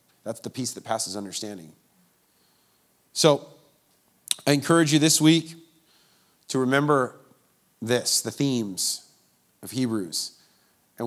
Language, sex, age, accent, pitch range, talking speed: English, male, 30-49, American, 115-145 Hz, 110 wpm